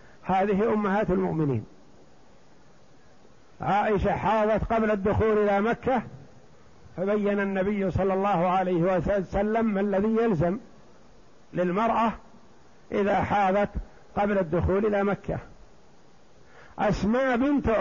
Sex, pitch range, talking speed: male, 190-225 Hz, 90 wpm